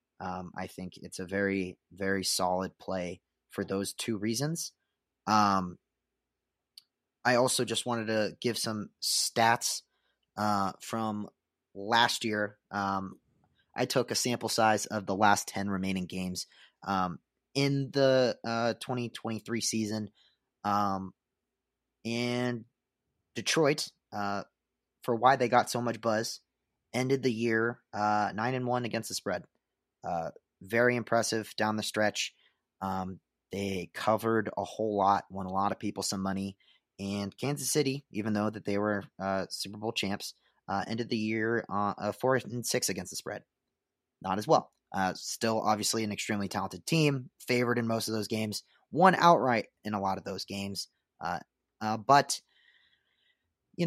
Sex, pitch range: male, 100-120 Hz